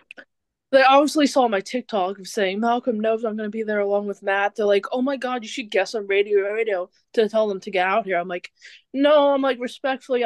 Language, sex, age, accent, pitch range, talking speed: English, female, 20-39, American, 205-255 Hz, 235 wpm